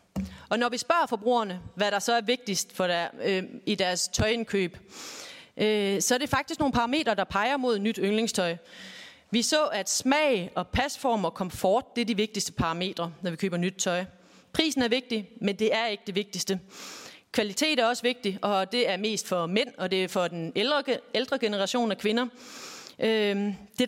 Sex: female